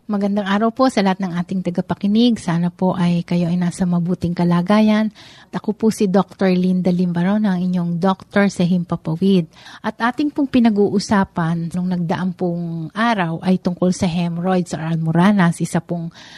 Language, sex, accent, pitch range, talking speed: Filipino, female, native, 180-215 Hz, 160 wpm